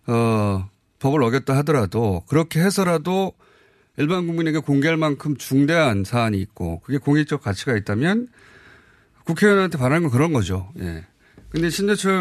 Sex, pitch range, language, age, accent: male, 115-160 Hz, Korean, 30-49, native